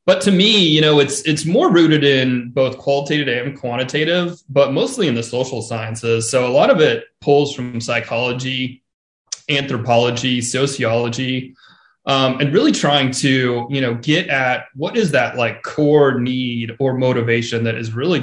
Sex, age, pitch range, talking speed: male, 20-39, 120-140 Hz, 165 wpm